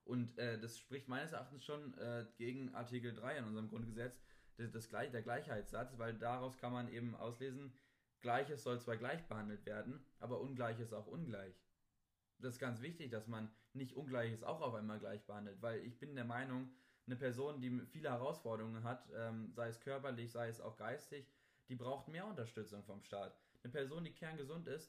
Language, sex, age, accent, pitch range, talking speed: German, male, 20-39, German, 115-140 Hz, 180 wpm